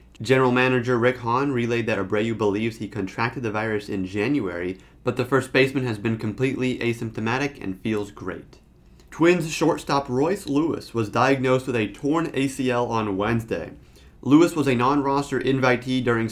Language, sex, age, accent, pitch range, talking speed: English, male, 30-49, American, 100-125 Hz, 160 wpm